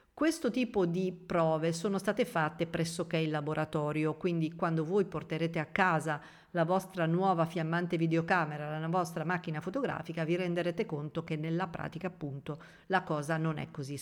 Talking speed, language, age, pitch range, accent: 160 wpm, Italian, 50-69, 160-195 Hz, native